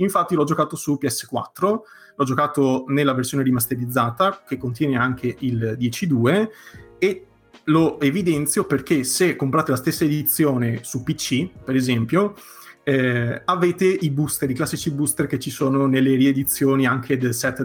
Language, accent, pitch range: Italian, native, 130-150 Hz